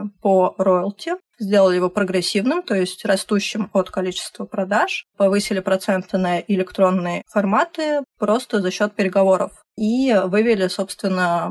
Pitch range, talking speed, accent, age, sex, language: 185-215 Hz, 120 wpm, native, 20-39, female, Russian